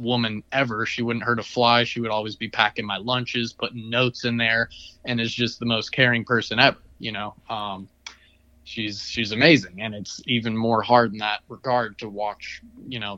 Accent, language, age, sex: American, English, 20-39, male